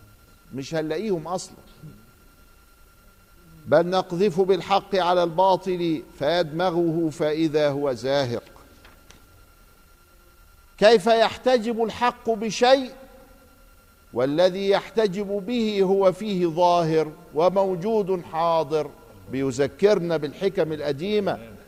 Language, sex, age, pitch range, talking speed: Arabic, male, 50-69, 135-200 Hz, 75 wpm